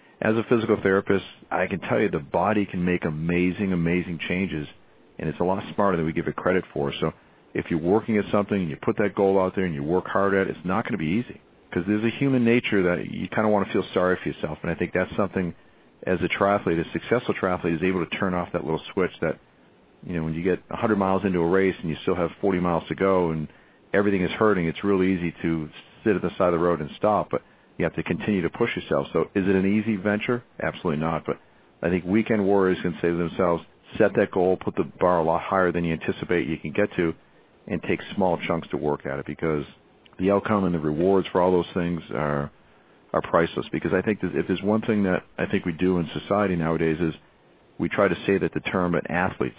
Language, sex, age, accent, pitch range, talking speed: English, male, 50-69, American, 85-100 Hz, 250 wpm